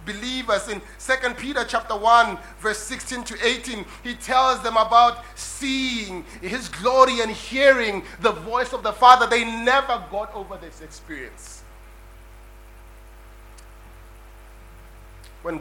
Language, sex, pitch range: English, male, 155-235 Hz